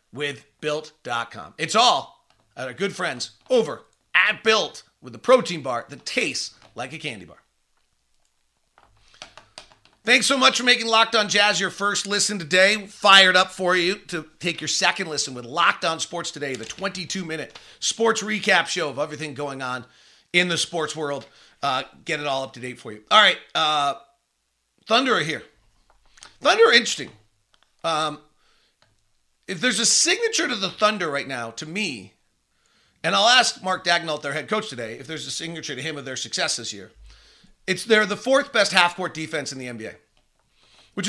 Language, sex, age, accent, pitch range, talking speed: English, male, 40-59, American, 145-210 Hz, 175 wpm